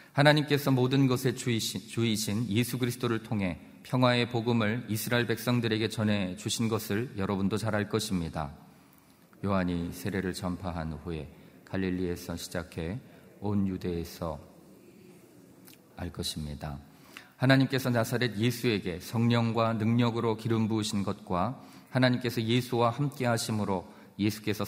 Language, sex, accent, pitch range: Korean, male, native, 90-115 Hz